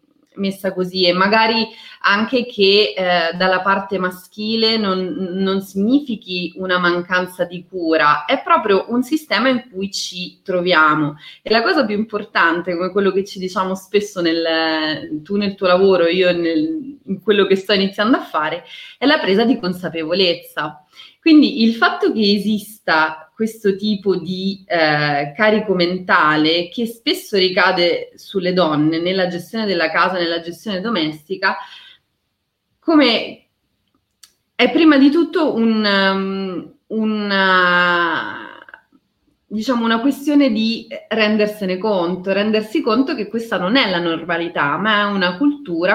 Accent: native